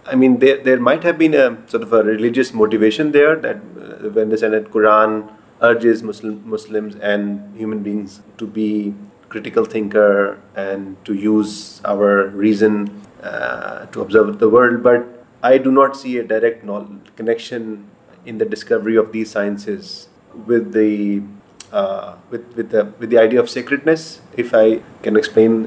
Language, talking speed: English, 160 wpm